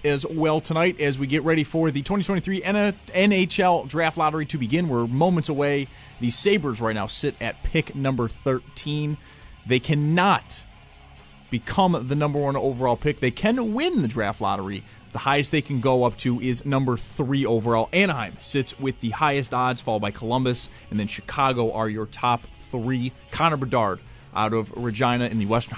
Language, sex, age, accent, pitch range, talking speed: English, male, 30-49, American, 110-140 Hz, 175 wpm